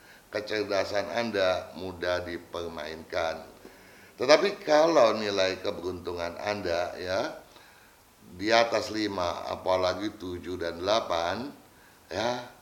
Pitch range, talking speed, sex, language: 90-115 Hz, 85 wpm, male, Indonesian